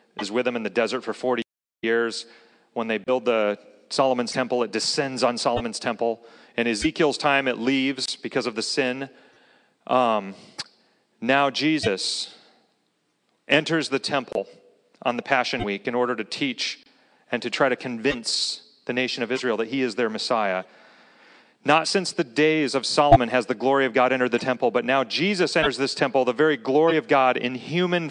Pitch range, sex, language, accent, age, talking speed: 115-150 Hz, male, English, American, 40-59, 180 wpm